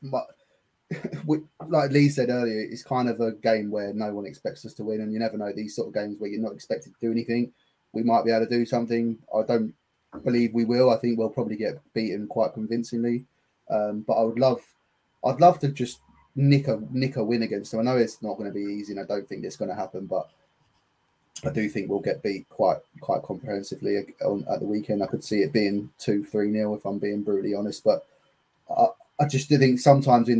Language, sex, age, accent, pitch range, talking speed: English, male, 20-39, British, 105-125 Hz, 235 wpm